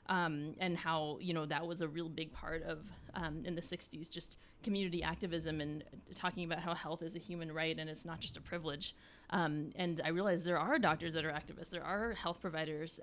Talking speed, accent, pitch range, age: 220 wpm, American, 155-175 Hz, 20-39